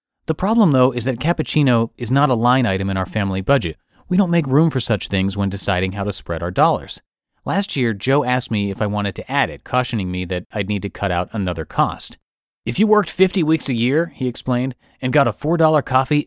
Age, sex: 30-49, male